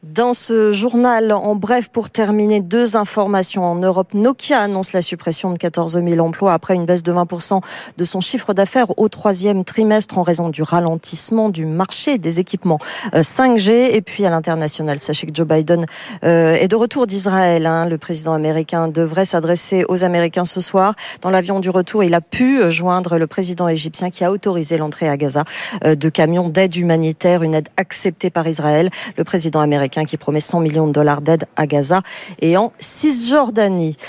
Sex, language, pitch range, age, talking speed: female, French, 165-215 Hz, 40-59, 180 wpm